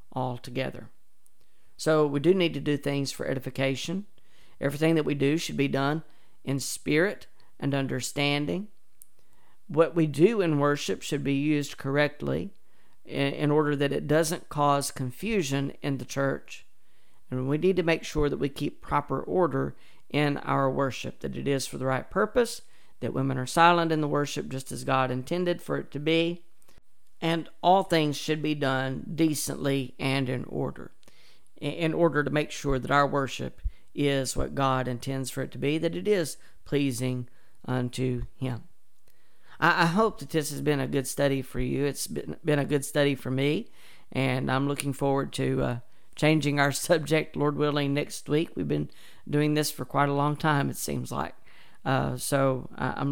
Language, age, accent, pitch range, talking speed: English, 50-69, American, 130-155 Hz, 175 wpm